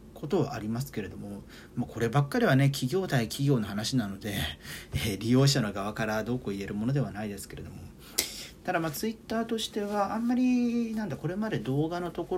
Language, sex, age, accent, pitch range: Japanese, male, 40-59, native, 110-160 Hz